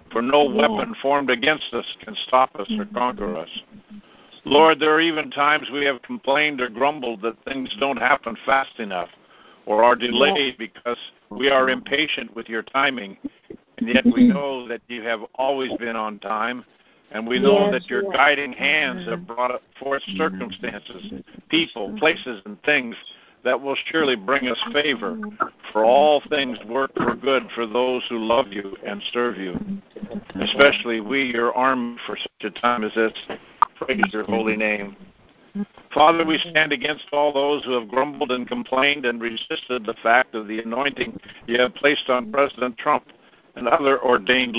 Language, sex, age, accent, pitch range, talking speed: English, male, 60-79, American, 120-150 Hz, 170 wpm